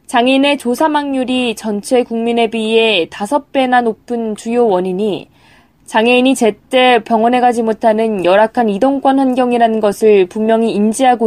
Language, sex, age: Korean, female, 20-39